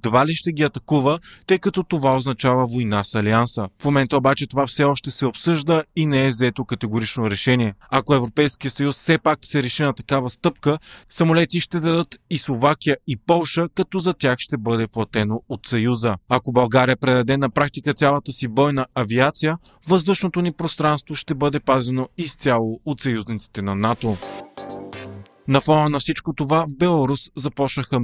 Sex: male